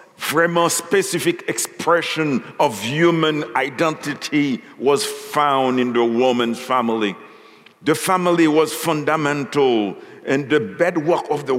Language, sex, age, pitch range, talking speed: English, male, 60-79, 150-175 Hz, 110 wpm